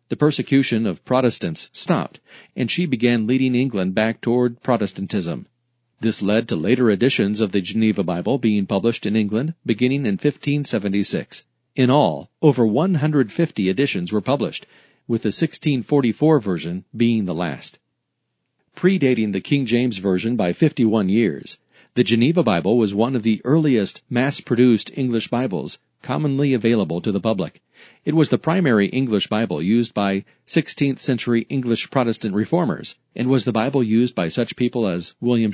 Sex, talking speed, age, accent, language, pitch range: male, 150 wpm, 40-59, American, English, 110-135 Hz